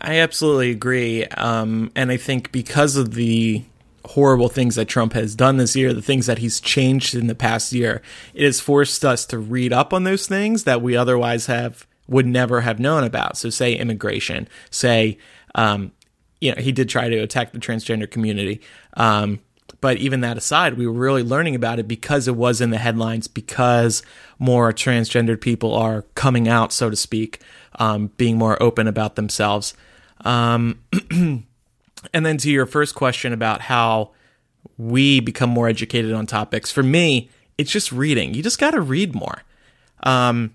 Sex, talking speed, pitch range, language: male, 180 wpm, 115-135 Hz, English